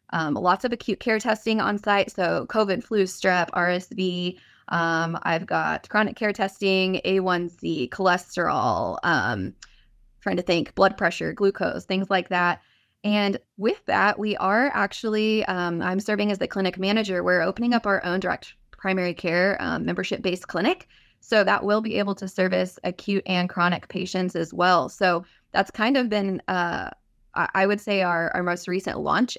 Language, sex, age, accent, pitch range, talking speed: English, female, 20-39, American, 180-215 Hz, 170 wpm